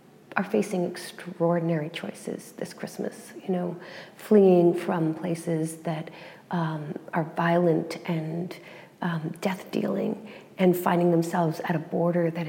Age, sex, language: 40-59, female, English